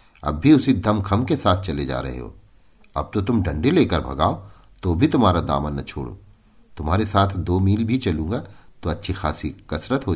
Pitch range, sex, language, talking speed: 85-115 Hz, male, Hindi, 195 wpm